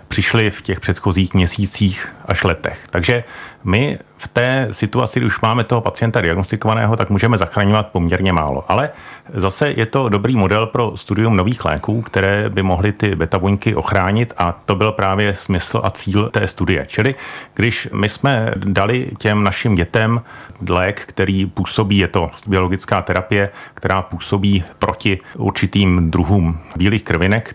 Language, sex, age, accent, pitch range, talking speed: Czech, male, 40-59, native, 90-110 Hz, 155 wpm